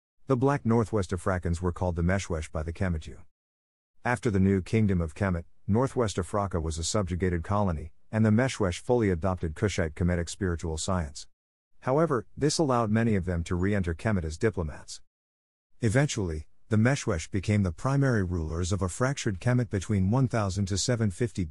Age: 50-69